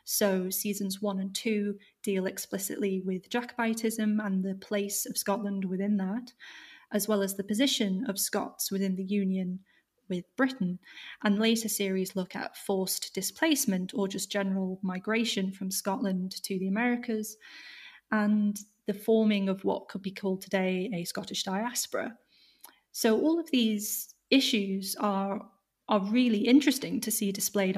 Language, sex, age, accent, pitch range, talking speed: English, female, 30-49, British, 195-230 Hz, 145 wpm